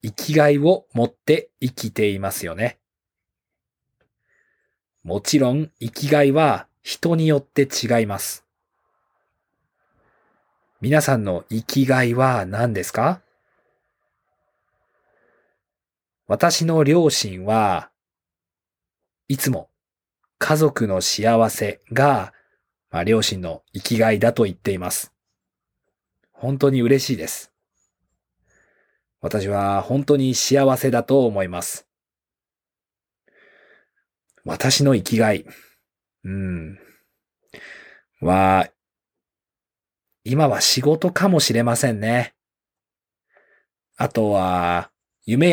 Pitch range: 95-140 Hz